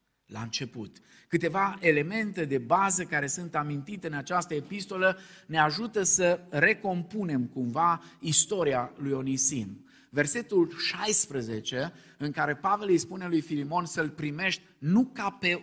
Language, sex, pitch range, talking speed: Romanian, male, 145-185 Hz, 130 wpm